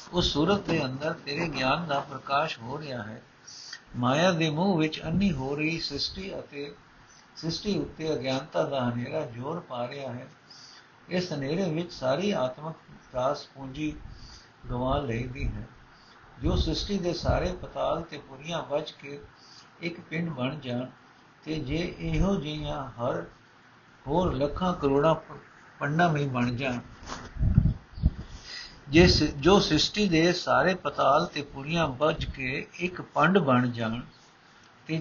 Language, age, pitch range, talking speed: Punjabi, 60-79, 130-165 Hz, 120 wpm